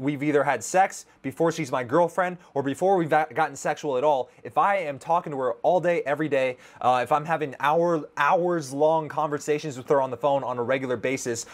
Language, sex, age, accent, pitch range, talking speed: English, male, 20-39, American, 140-170 Hz, 215 wpm